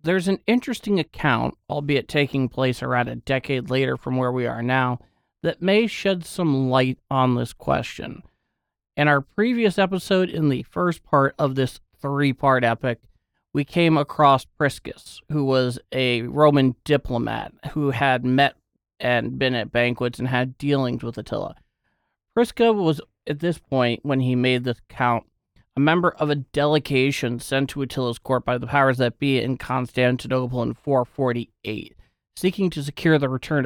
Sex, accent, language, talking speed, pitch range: male, American, English, 160 wpm, 125-150 Hz